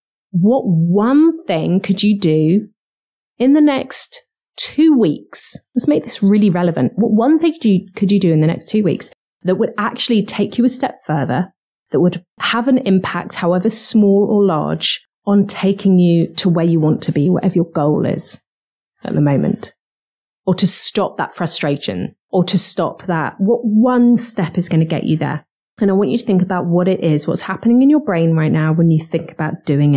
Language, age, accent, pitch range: English, 30-49, British, 175-230 Hz